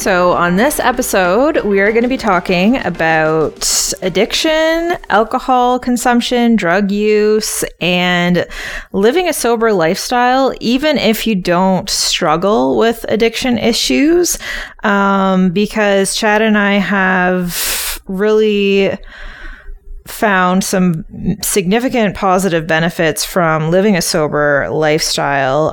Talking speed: 105 wpm